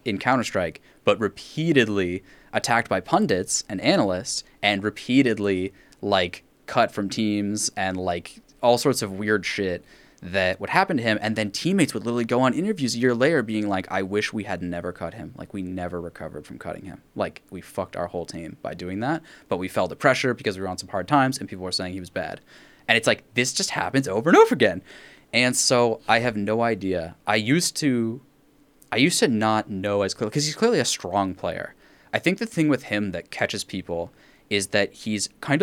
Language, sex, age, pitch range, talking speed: English, male, 10-29, 95-135 Hz, 215 wpm